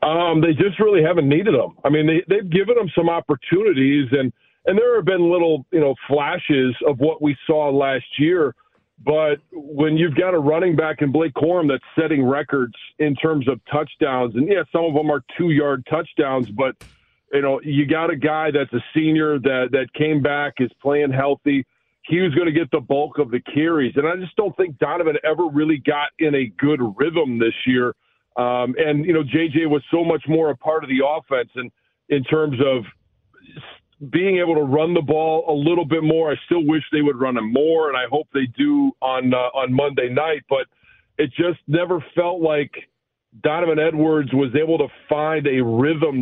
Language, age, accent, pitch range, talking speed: English, 40-59, American, 140-160 Hz, 205 wpm